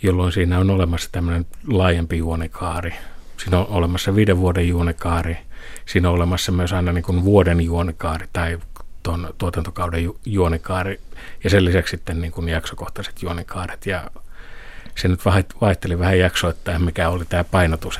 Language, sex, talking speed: Finnish, male, 150 wpm